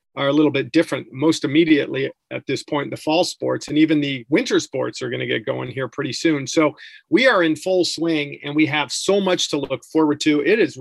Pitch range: 145-170 Hz